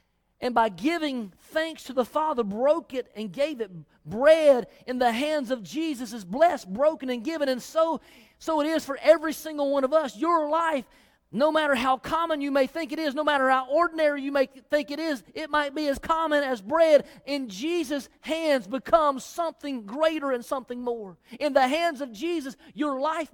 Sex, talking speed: male, 200 wpm